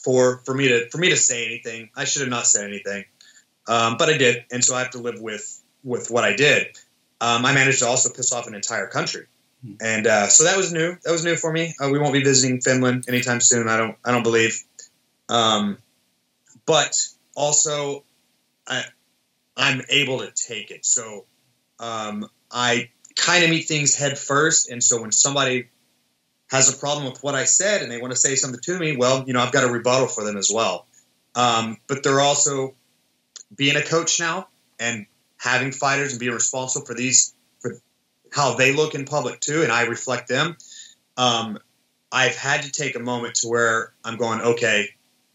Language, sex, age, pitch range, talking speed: English, male, 30-49, 115-140 Hz, 200 wpm